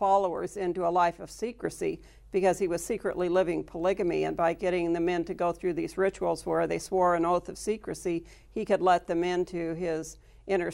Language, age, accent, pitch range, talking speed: English, 60-79, American, 175-195 Hz, 200 wpm